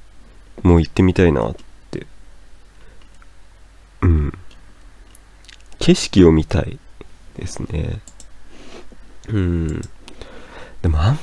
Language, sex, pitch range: Japanese, male, 80-105 Hz